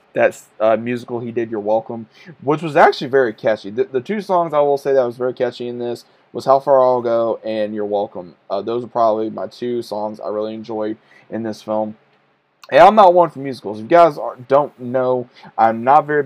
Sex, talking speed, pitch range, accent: male, 230 wpm, 115-140 Hz, American